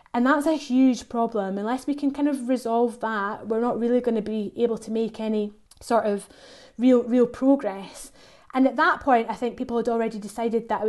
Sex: female